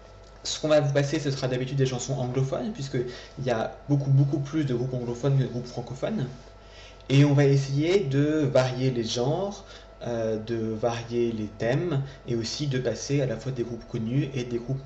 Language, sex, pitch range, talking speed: French, male, 115-135 Hz, 200 wpm